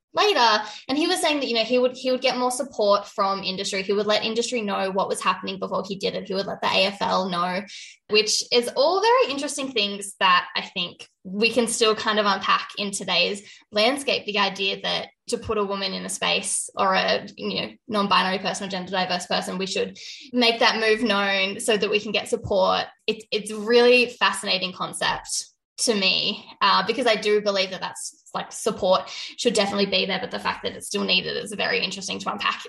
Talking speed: 215 wpm